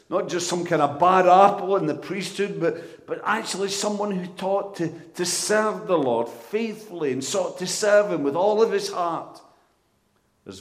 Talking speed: 185 wpm